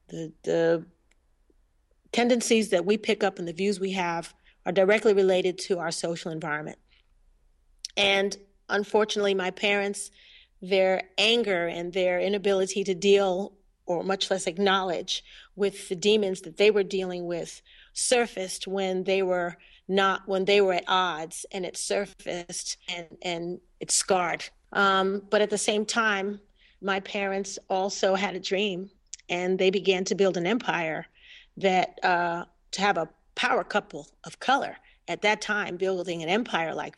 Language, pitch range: English, 175-200 Hz